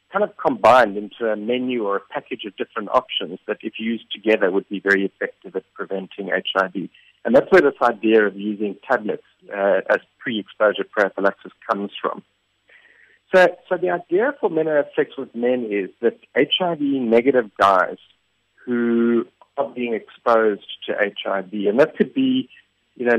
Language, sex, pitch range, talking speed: English, male, 105-135 Hz, 165 wpm